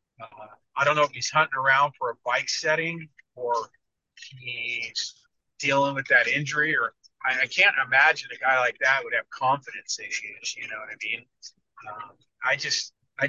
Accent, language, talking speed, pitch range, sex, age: American, English, 180 wpm, 135-155 Hz, male, 30-49